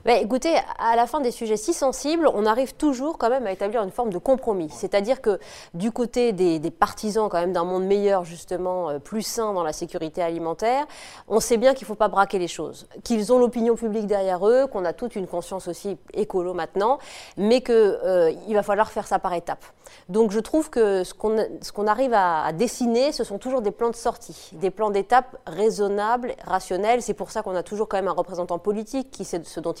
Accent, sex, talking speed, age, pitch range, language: French, female, 230 wpm, 20-39, 180-235 Hz, French